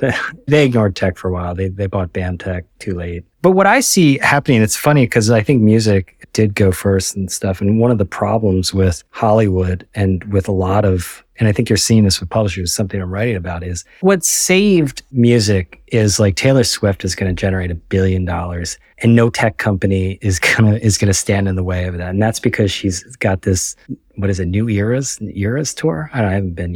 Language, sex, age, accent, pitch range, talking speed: English, male, 30-49, American, 95-110 Hz, 230 wpm